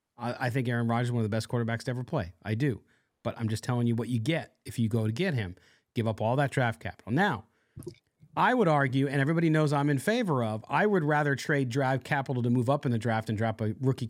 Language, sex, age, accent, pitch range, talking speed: English, male, 40-59, American, 120-170 Hz, 265 wpm